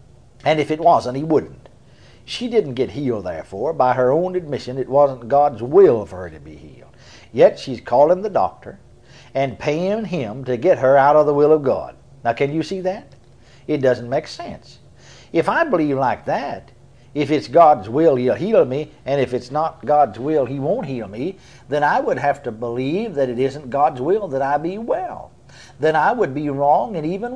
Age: 60-79